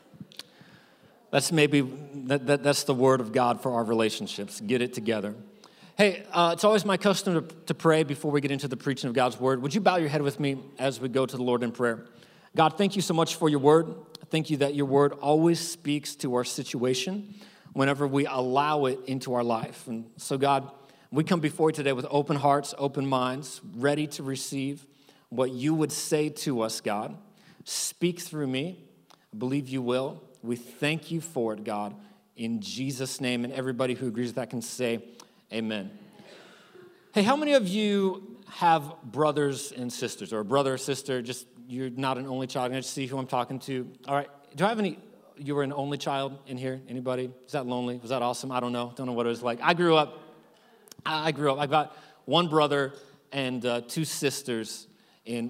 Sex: male